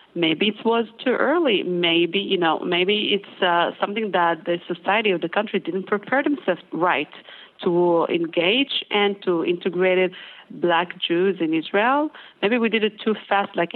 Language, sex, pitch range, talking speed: English, female, 170-200 Hz, 165 wpm